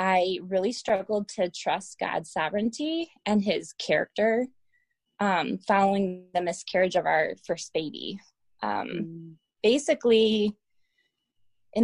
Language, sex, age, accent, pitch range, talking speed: English, female, 20-39, American, 185-235 Hz, 105 wpm